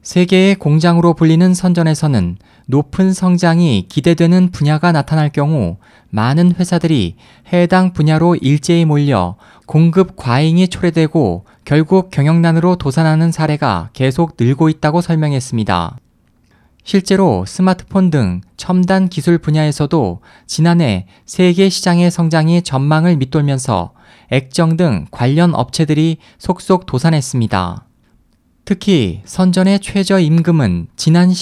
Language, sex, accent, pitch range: Korean, male, native, 130-175 Hz